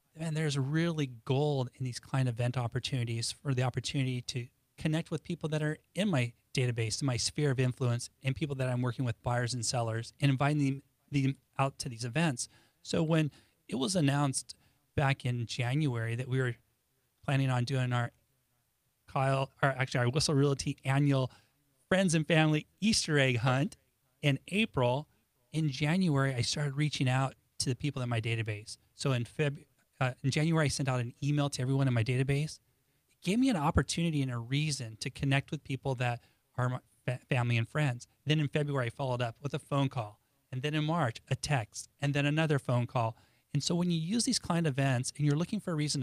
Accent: American